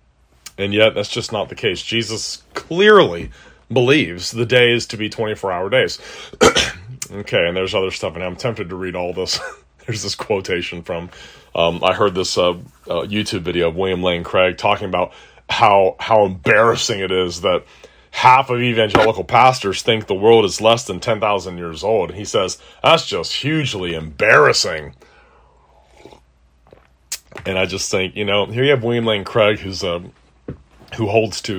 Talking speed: 170 wpm